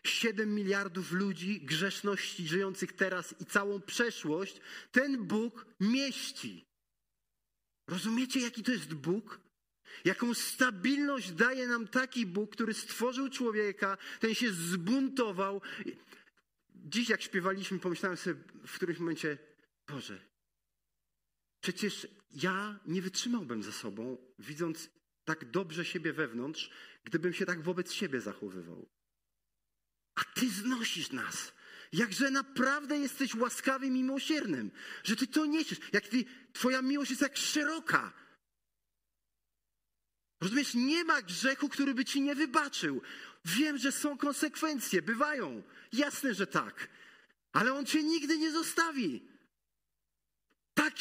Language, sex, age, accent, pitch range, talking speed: Polish, male, 40-59, native, 185-270 Hz, 120 wpm